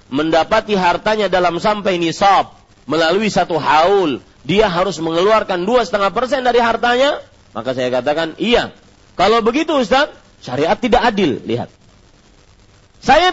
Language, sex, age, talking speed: Malay, male, 40-59, 120 wpm